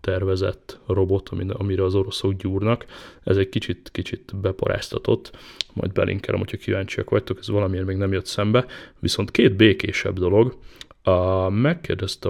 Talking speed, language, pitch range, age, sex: 125 wpm, Hungarian, 95-105 Hz, 20-39, male